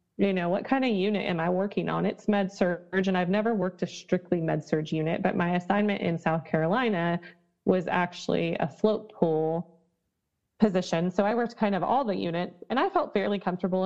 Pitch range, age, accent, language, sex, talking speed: 170-210 Hz, 20-39, American, English, female, 205 wpm